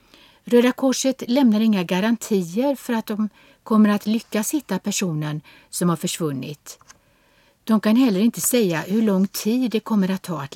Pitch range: 165-230 Hz